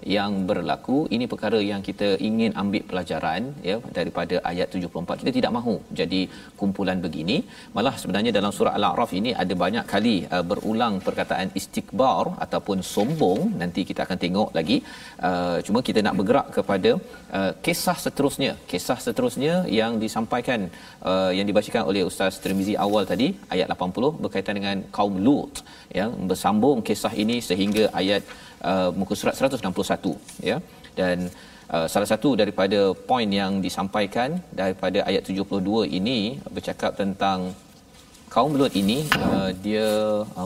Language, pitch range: Malayalam, 95-115 Hz